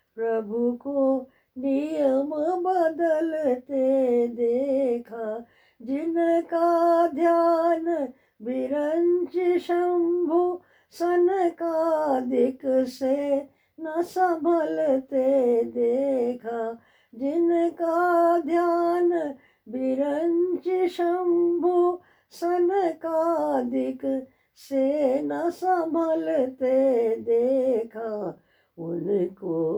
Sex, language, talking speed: female, English, 40 wpm